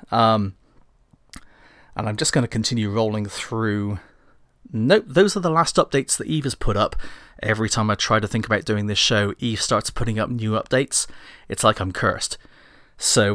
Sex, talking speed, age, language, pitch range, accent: male, 185 wpm, 30-49, English, 105-140 Hz, British